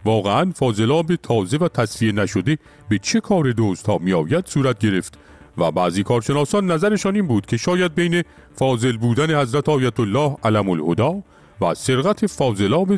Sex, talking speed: male, 155 wpm